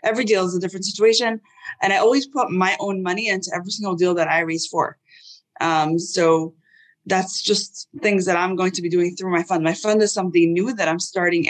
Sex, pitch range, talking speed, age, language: female, 170-215 Hz, 225 wpm, 20-39, English